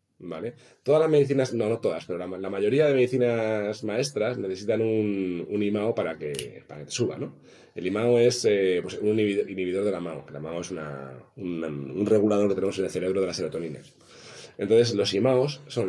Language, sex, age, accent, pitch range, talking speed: Spanish, male, 30-49, Spanish, 95-125 Hz, 205 wpm